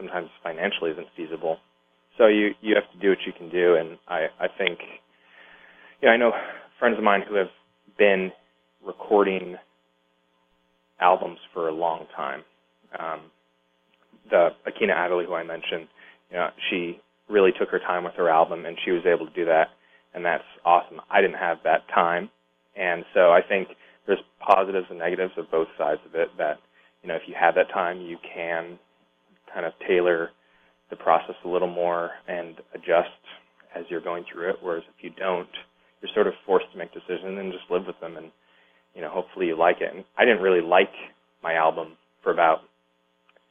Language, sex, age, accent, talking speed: English, male, 20-39, American, 190 wpm